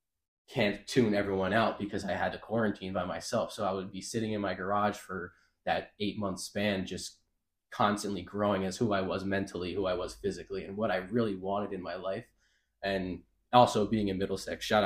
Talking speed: 200 wpm